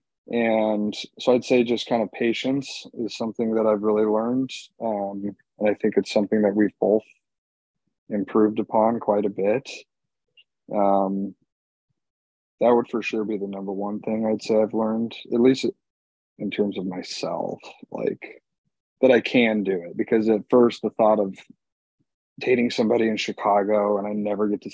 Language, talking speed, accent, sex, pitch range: English, 165 wpm, American, male, 105-120 Hz